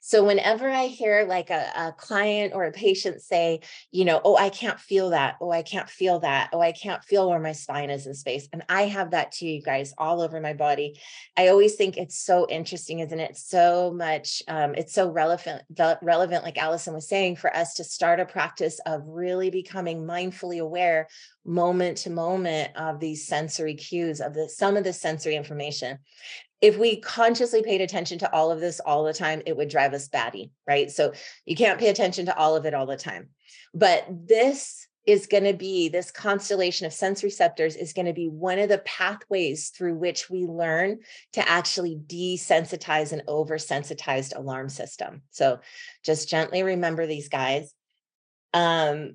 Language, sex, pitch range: English, female, 160-195 Hz